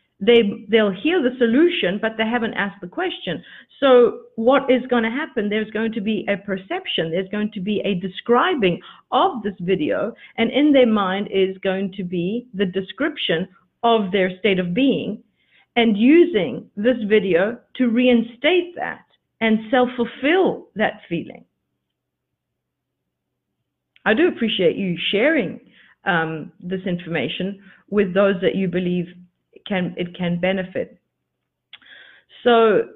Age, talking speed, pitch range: 50-69, 140 wpm, 195-255 Hz